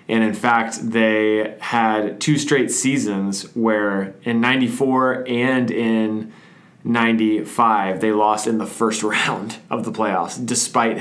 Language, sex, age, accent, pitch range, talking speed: English, male, 20-39, American, 110-130 Hz, 130 wpm